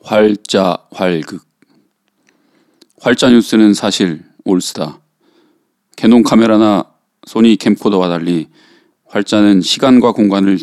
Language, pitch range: Korean, 95-115 Hz